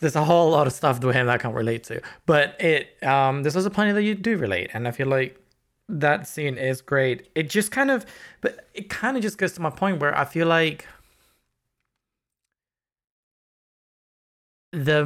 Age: 20-39